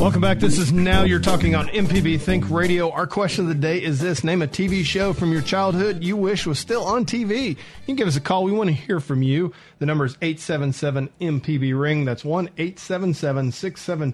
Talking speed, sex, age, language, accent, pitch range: 230 wpm, male, 40-59, English, American, 140-175 Hz